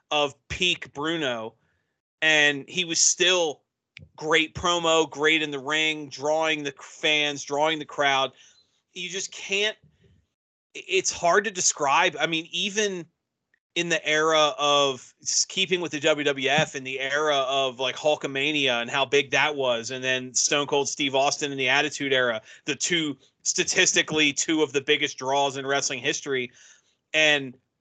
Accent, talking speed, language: American, 150 wpm, English